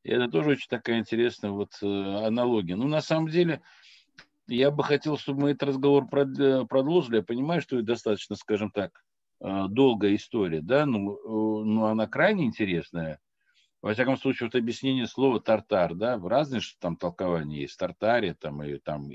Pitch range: 95-140 Hz